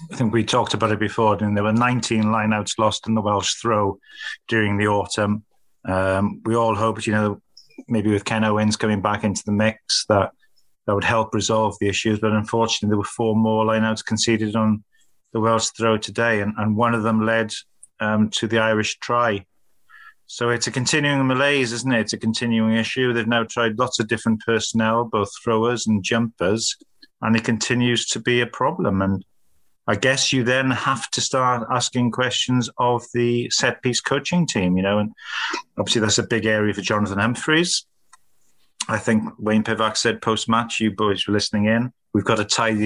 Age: 30-49